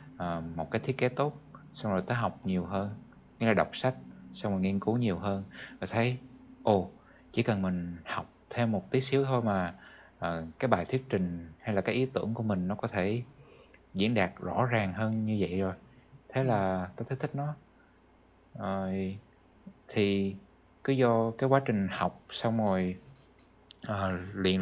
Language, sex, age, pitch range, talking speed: Vietnamese, male, 20-39, 95-125 Hz, 175 wpm